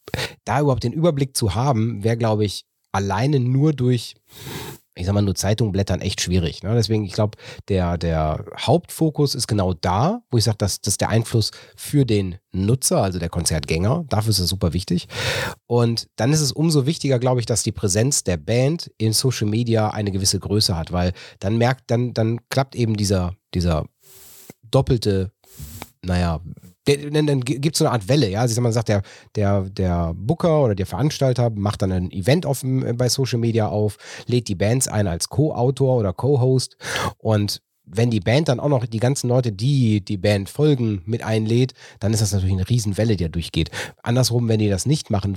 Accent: German